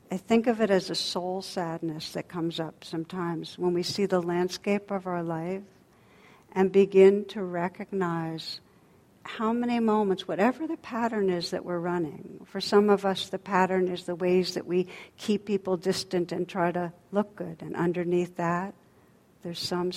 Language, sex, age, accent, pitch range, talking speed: English, female, 60-79, American, 175-195 Hz, 175 wpm